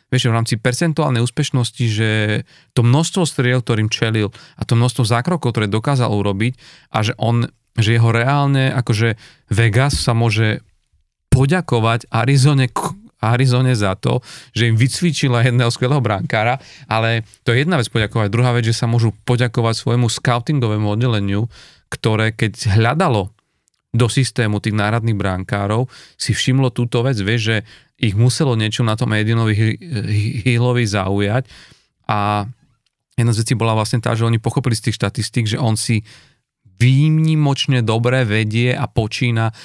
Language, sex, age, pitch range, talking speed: Slovak, male, 30-49, 110-125 Hz, 145 wpm